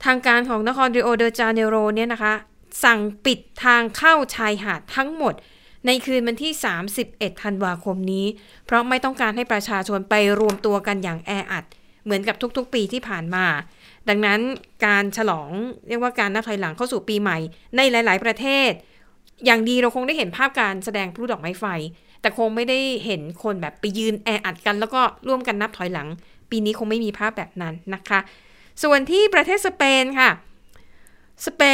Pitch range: 205-255 Hz